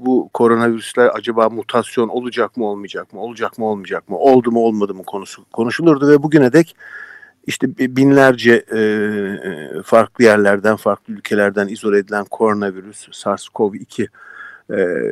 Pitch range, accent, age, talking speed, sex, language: 110-140 Hz, native, 50-69, 130 wpm, male, Turkish